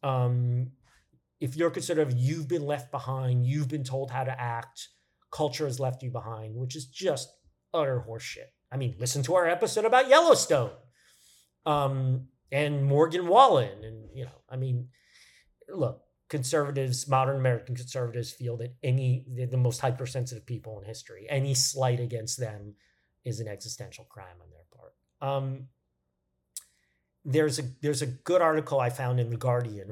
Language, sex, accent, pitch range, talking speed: English, male, American, 115-135 Hz, 155 wpm